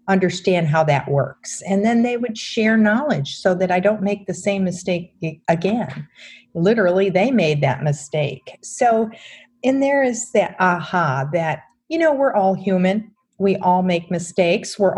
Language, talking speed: English, 165 wpm